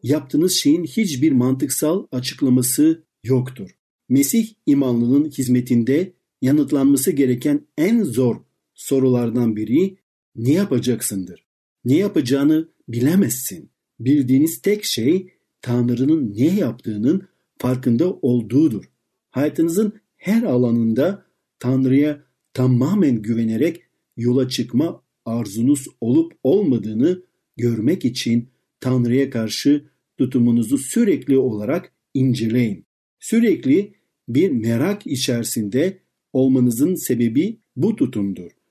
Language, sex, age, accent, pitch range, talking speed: Turkish, male, 50-69, native, 120-165 Hz, 85 wpm